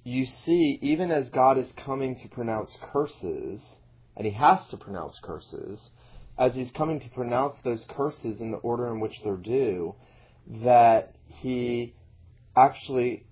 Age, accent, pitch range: 30-49, American, 110-130 Hz